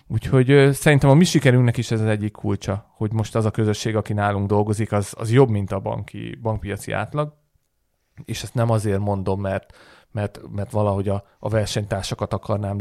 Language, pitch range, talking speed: Hungarian, 100-120 Hz, 180 wpm